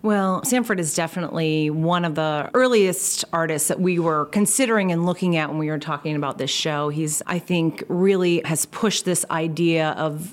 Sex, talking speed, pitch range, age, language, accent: female, 185 wpm, 155-180 Hz, 30-49, English, American